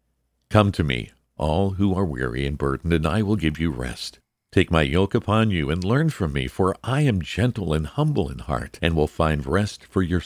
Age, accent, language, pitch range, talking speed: 50-69, American, English, 75-105 Hz, 220 wpm